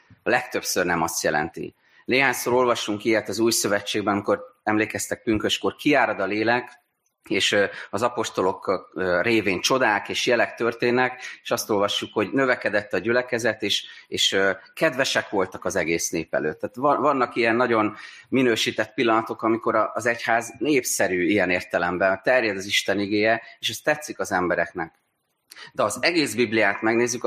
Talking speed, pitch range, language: 150 wpm, 100-125 Hz, Hungarian